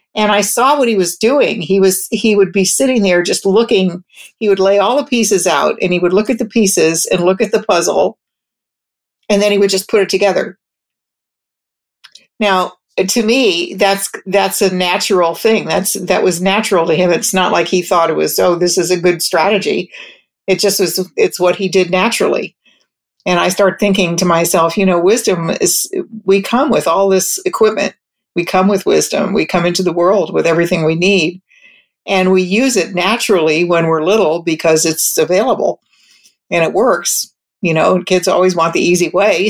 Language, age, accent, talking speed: English, 50-69, American, 195 wpm